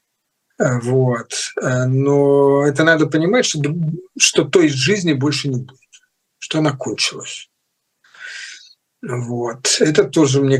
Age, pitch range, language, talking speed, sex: 50-69, 130-150 Hz, Russian, 110 wpm, male